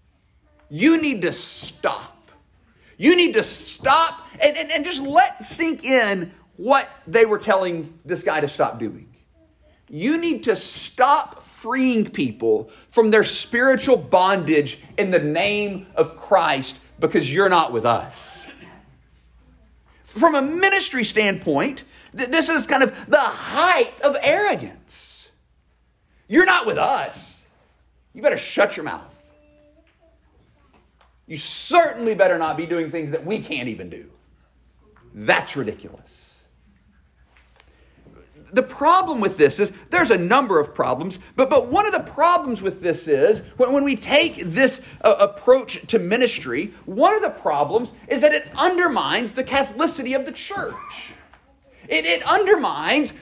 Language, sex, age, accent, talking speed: English, male, 40-59, American, 140 wpm